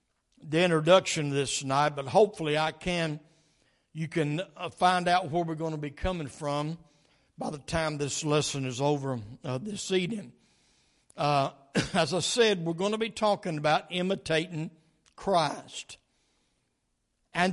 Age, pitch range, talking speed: 60-79, 155-220 Hz, 145 wpm